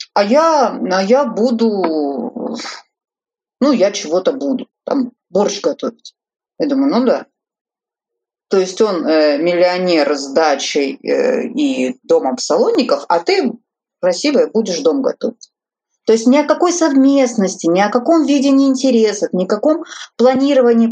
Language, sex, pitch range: Russian, female, 185-265 Hz